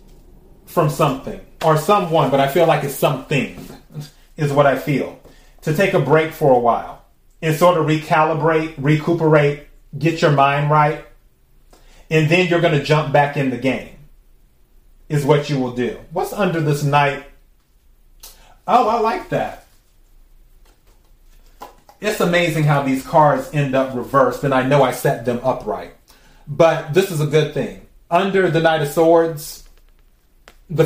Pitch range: 140-170 Hz